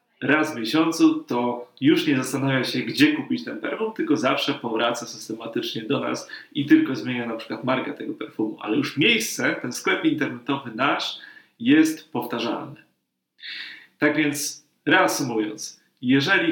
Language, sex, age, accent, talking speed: Polish, male, 30-49, native, 140 wpm